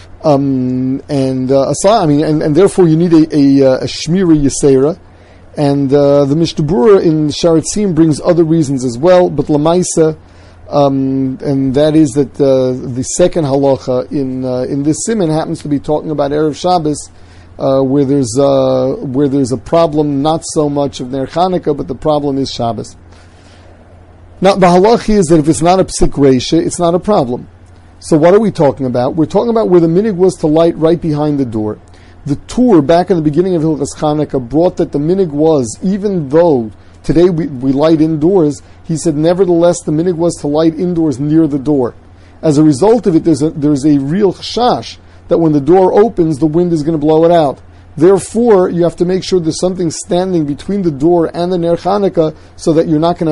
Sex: male